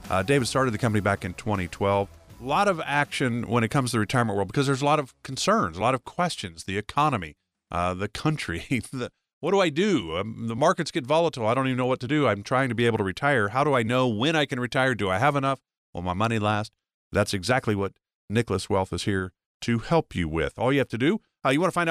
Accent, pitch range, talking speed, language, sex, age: American, 100-140 Hz, 260 wpm, English, male, 50-69